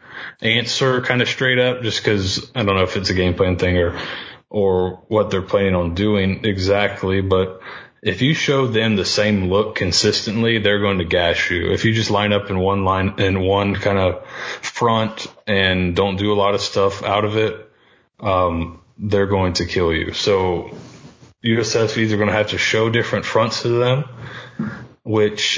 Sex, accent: male, American